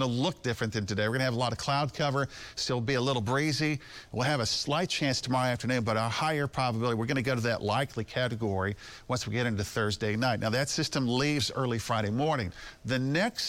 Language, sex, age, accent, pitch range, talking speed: English, male, 50-69, American, 115-140 Hz, 240 wpm